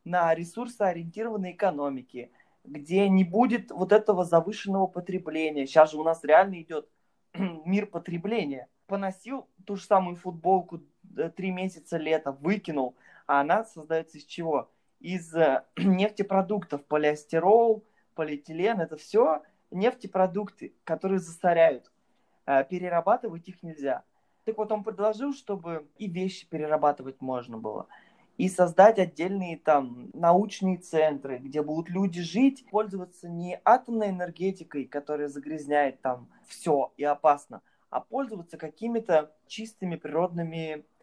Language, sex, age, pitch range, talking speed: Russian, male, 20-39, 150-195 Hz, 115 wpm